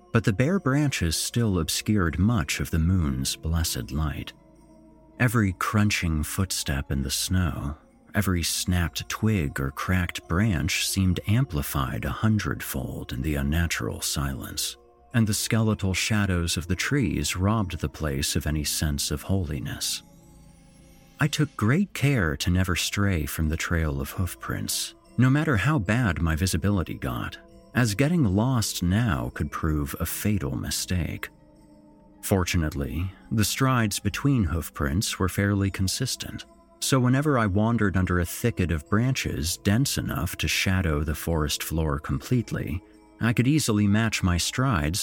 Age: 40-59